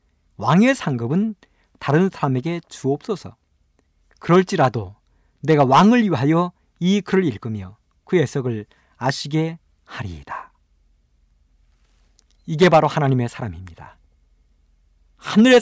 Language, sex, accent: Korean, male, native